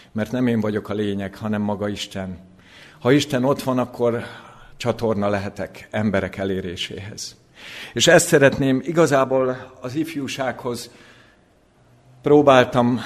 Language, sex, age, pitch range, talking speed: Hungarian, male, 50-69, 110-130 Hz, 115 wpm